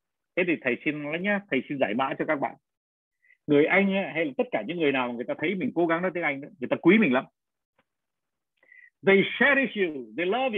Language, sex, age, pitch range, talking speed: Vietnamese, male, 60-79, 180-275 Hz, 225 wpm